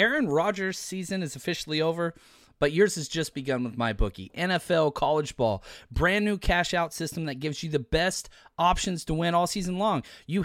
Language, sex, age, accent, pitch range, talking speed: English, male, 30-49, American, 135-195 Hz, 185 wpm